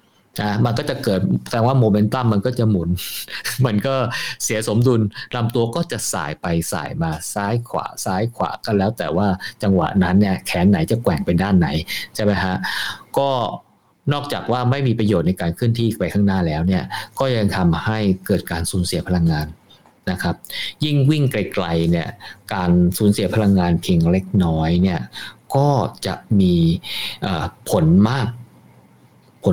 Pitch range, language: 85-105 Hz, Thai